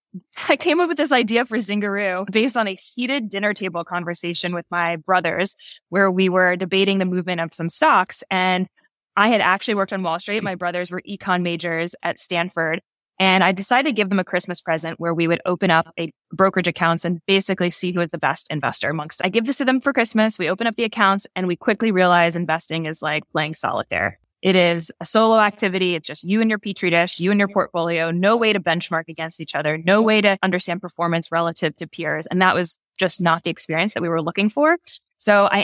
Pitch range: 170-200 Hz